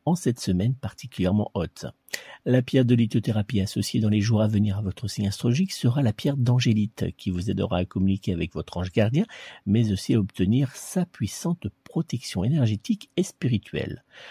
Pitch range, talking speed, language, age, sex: 100-130 Hz, 175 wpm, French, 50-69, male